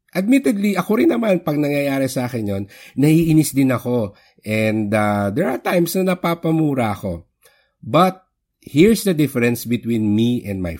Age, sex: 50-69, male